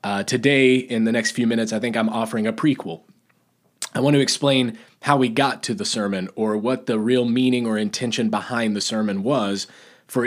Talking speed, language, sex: 205 wpm, English, male